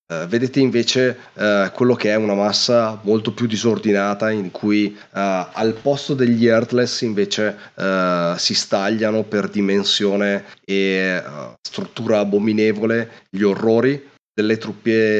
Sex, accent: male, native